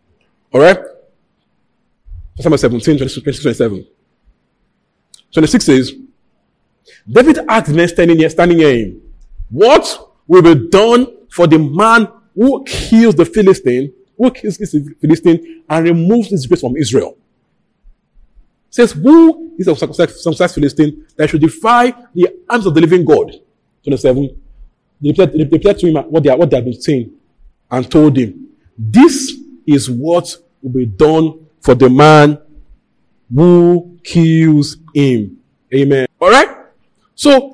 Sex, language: male, English